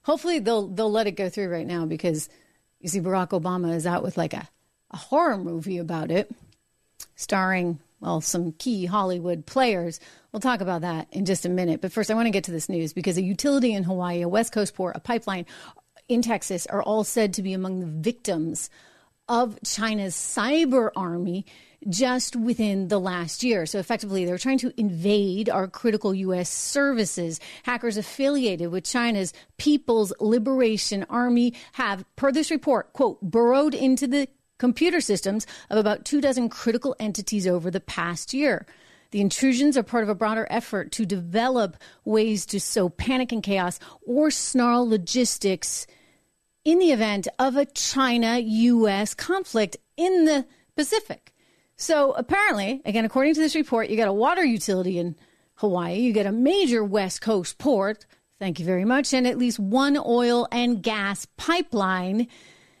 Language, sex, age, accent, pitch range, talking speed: English, female, 30-49, American, 185-250 Hz, 170 wpm